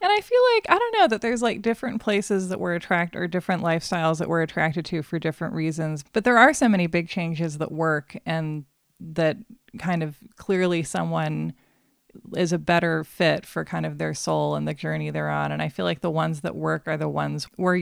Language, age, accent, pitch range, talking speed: English, 20-39, American, 150-180 Hz, 220 wpm